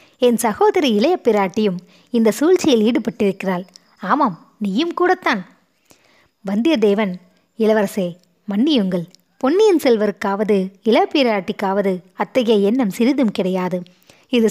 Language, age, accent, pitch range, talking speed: Tamil, 20-39, native, 195-250 Hz, 85 wpm